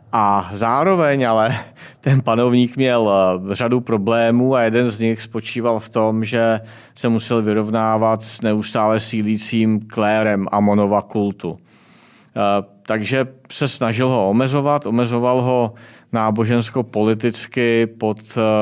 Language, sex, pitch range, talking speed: Czech, male, 105-120 Hz, 105 wpm